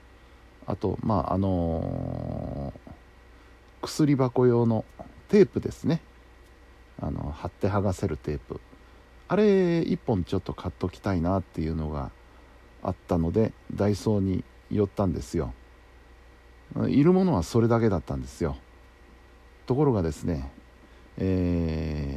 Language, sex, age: Japanese, male, 50-69